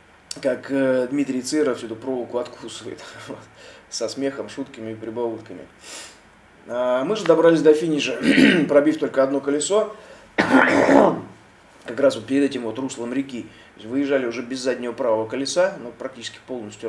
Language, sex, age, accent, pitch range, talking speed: Russian, male, 20-39, native, 110-140 Hz, 125 wpm